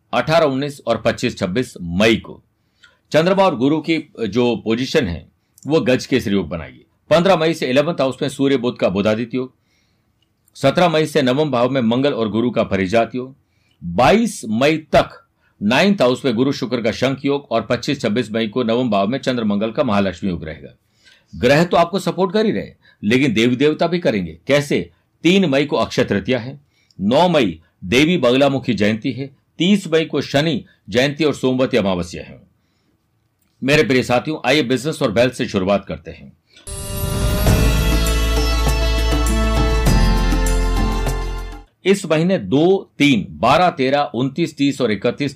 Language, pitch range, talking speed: Hindi, 105-155 Hz, 130 wpm